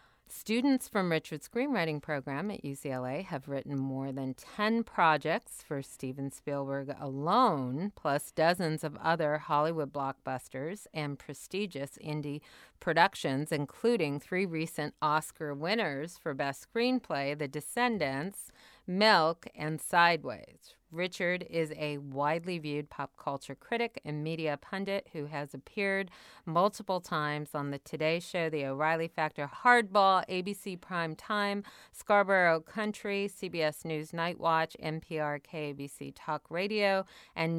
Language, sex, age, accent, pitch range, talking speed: English, female, 40-59, American, 145-190 Hz, 125 wpm